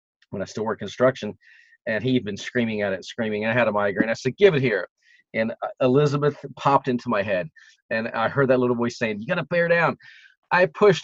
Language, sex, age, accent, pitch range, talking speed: English, male, 40-59, American, 120-160 Hz, 230 wpm